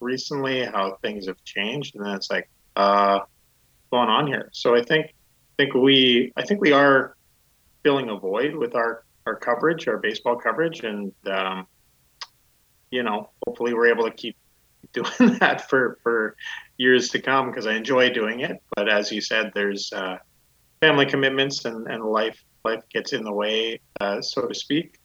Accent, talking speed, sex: American, 180 wpm, male